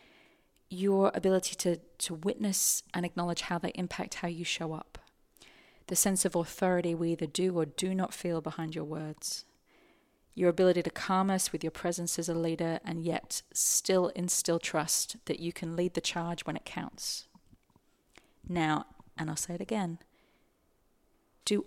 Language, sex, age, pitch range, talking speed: English, female, 30-49, 165-195 Hz, 165 wpm